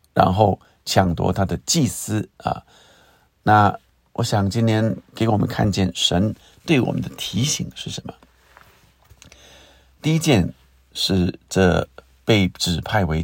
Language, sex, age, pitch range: Chinese, male, 50-69, 80-110 Hz